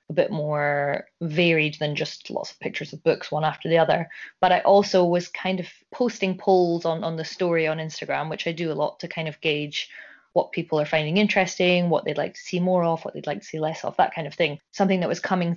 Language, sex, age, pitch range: English, female, 20-39, 155-180 Hz